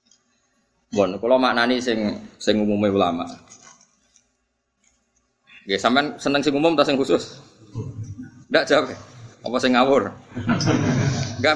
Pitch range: 105-135 Hz